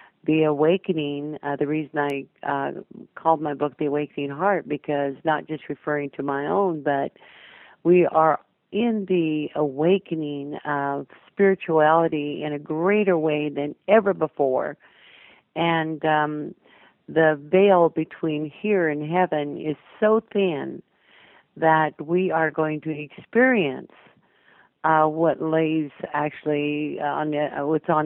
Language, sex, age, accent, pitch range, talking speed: English, female, 50-69, American, 150-165 Hz, 130 wpm